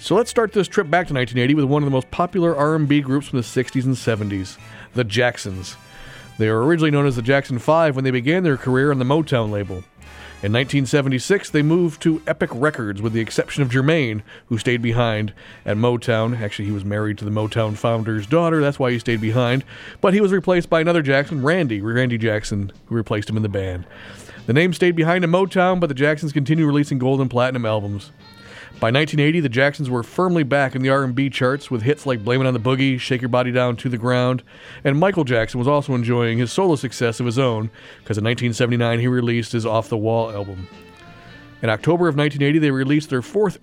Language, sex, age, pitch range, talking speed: English, male, 40-59, 115-150 Hz, 215 wpm